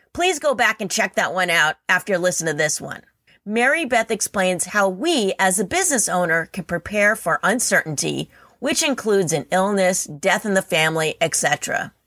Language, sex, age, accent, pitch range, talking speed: English, female, 30-49, American, 170-235 Hz, 180 wpm